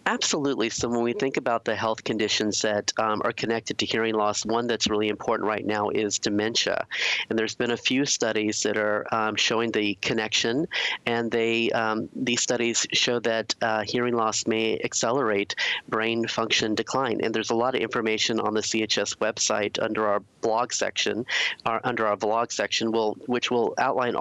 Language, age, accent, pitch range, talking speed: English, 40-59, American, 110-120 Hz, 185 wpm